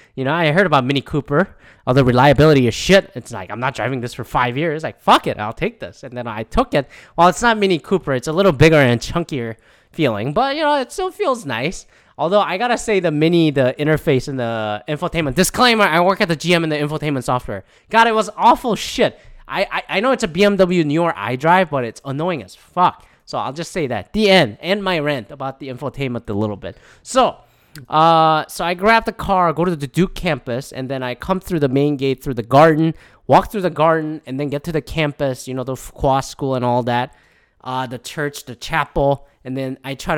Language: English